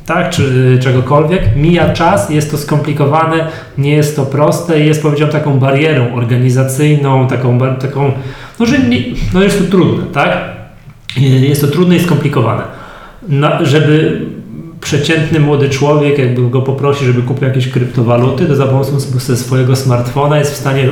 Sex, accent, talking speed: male, native, 150 wpm